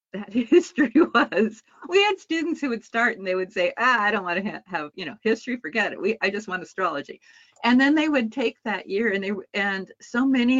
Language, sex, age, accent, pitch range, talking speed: English, female, 50-69, American, 195-255 Hz, 230 wpm